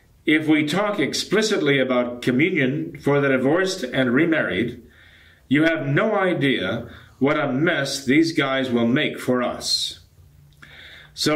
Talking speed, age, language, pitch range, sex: 130 wpm, 40-59, English, 115-155 Hz, male